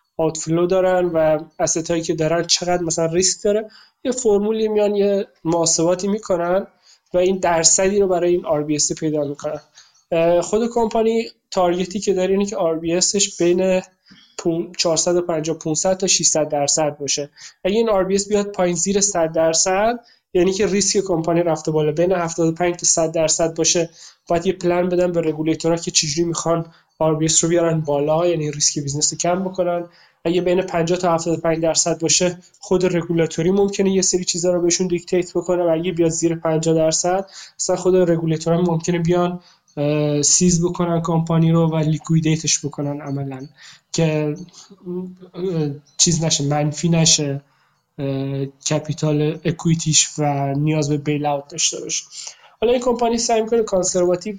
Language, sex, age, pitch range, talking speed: Persian, male, 20-39, 160-185 Hz, 145 wpm